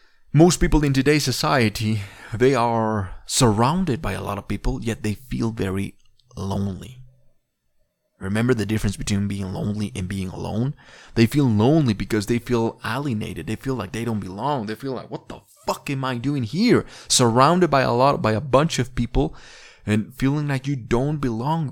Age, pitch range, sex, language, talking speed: 30-49, 105-135 Hz, male, English, 175 wpm